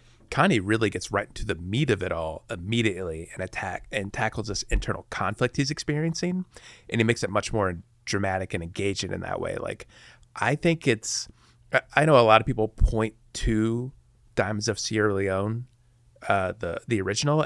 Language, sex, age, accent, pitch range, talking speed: English, male, 30-49, American, 95-120 Hz, 180 wpm